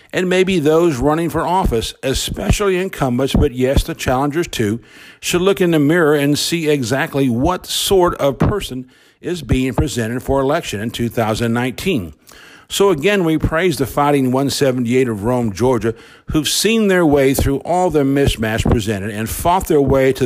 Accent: American